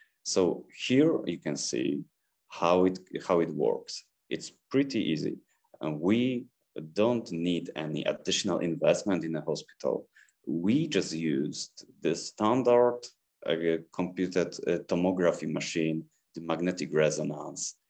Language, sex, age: English, male, 30-49